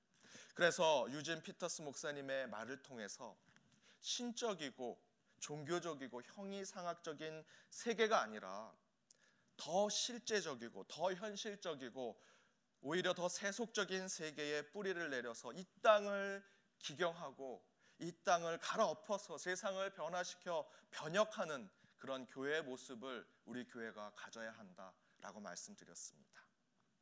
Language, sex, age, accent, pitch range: Korean, male, 30-49, native, 140-200 Hz